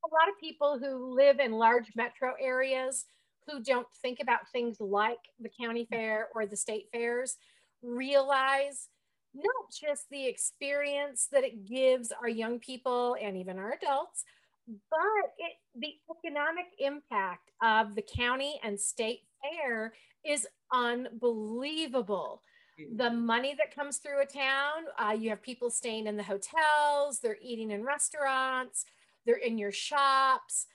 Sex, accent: female, American